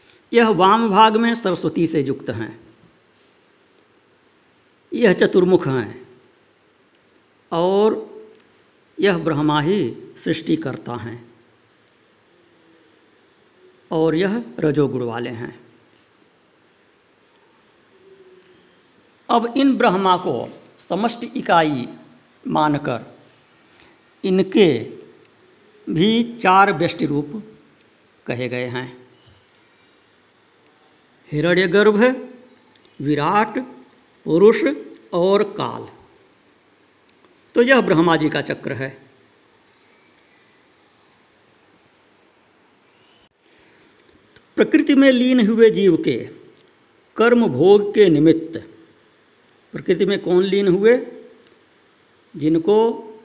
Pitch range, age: 150-245 Hz, 60-79